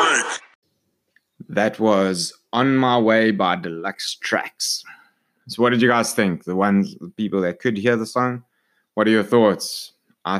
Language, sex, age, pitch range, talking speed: English, male, 20-39, 95-120 Hz, 160 wpm